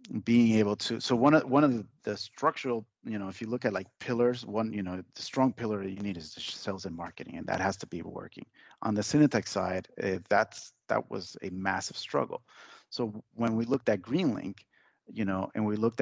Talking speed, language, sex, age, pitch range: 220 wpm, English, male, 30-49, 95-120 Hz